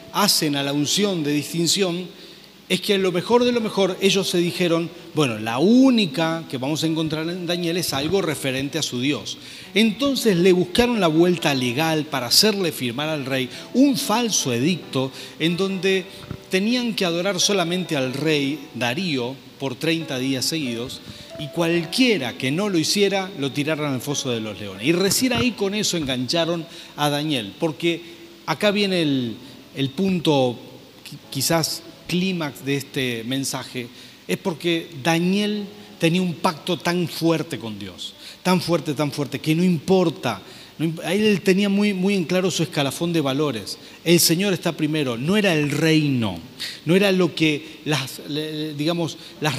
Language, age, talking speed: Spanish, 40-59, 160 wpm